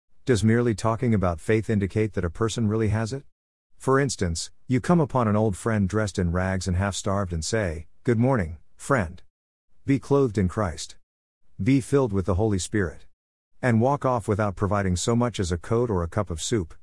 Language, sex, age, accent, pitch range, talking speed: English, male, 50-69, American, 90-115 Hz, 195 wpm